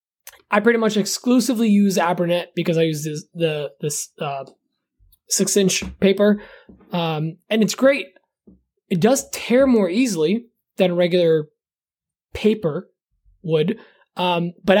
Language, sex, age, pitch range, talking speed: English, male, 20-39, 175-220 Hz, 120 wpm